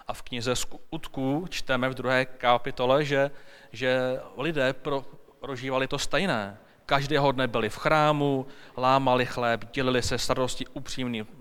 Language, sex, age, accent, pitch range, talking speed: Czech, male, 30-49, native, 120-145 Hz, 130 wpm